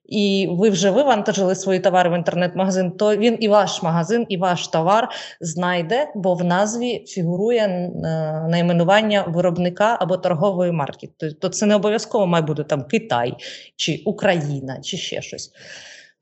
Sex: female